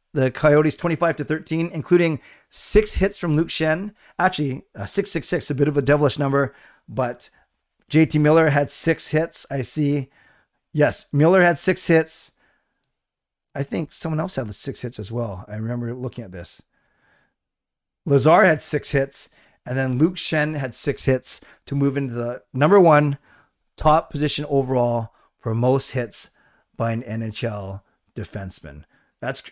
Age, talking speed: 40-59, 155 wpm